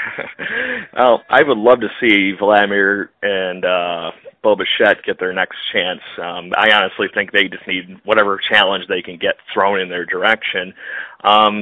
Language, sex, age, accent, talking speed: English, male, 40-59, American, 165 wpm